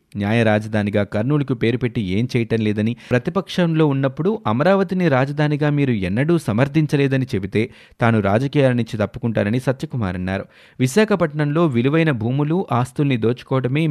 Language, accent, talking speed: Telugu, native, 110 wpm